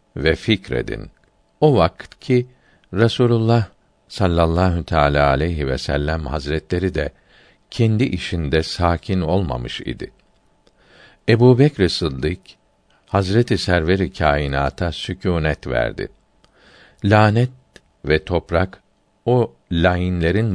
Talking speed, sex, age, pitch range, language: 90 wpm, male, 50-69, 80-105 Hz, Turkish